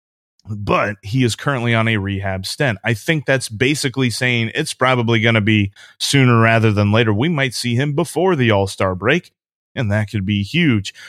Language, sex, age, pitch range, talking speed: English, male, 30-49, 115-150 Hz, 190 wpm